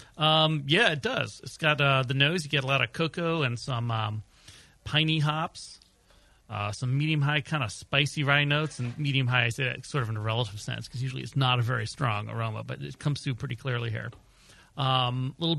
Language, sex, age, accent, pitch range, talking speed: English, male, 40-59, American, 120-145 Hz, 215 wpm